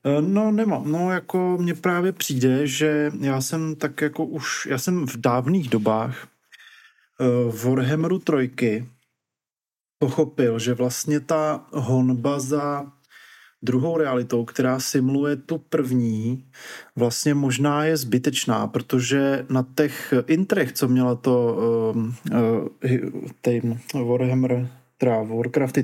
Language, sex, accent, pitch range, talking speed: Czech, male, native, 125-150 Hz, 110 wpm